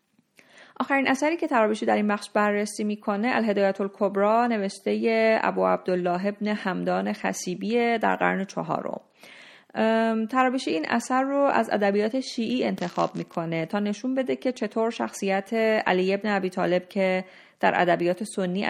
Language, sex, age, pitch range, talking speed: Persian, female, 30-49, 175-225 Hz, 135 wpm